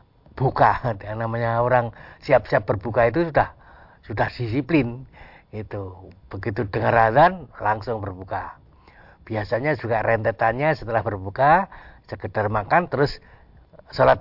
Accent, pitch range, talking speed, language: native, 105-140 Hz, 100 wpm, Indonesian